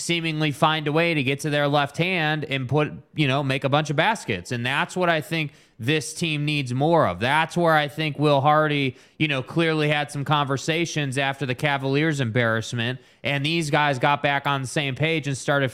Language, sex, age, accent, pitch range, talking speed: English, male, 20-39, American, 145-180 Hz, 215 wpm